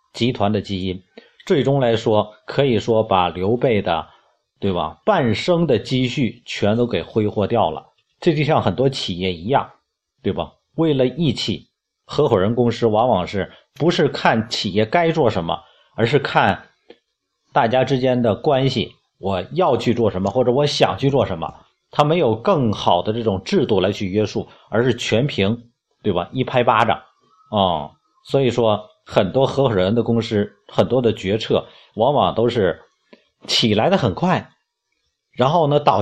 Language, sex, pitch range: Chinese, male, 105-135 Hz